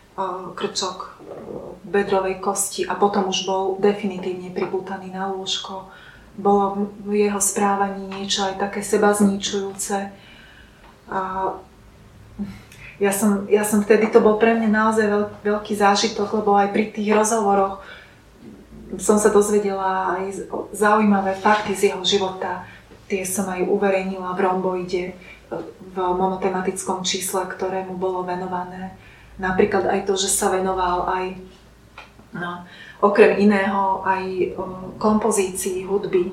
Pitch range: 190-205 Hz